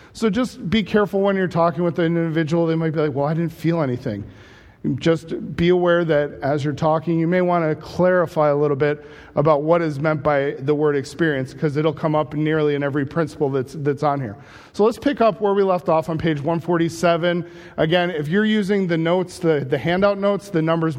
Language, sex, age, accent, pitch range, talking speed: English, male, 40-59, American, 145-175 Hz, 220 wpm